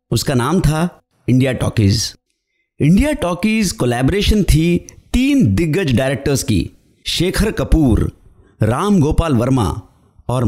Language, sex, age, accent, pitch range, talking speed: Hindi, male, 50-69, native, 120-185 Hz, 110 wpm